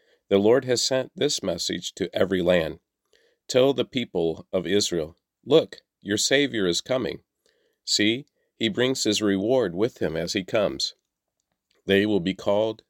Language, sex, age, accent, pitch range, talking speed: English, male, 50-69, American, 90-110 Hz, 155 wpm